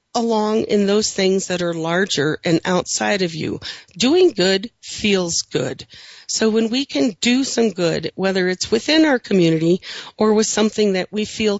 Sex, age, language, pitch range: female, 40-59, English, 175-225 Hz